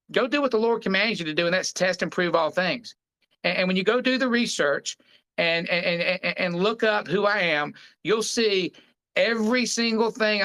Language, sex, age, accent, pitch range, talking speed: English, male, 50-69, American, 165-205 Hz, 220 wpm